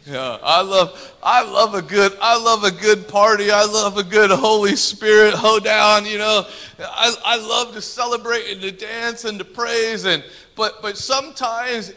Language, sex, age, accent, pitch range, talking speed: English, male, 30-49, American, 220-315 Hz, 185 wpm